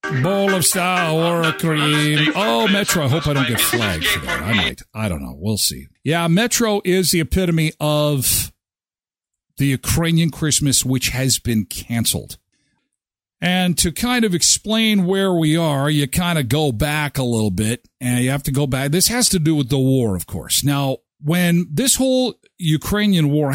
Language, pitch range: English, 125-170 Hz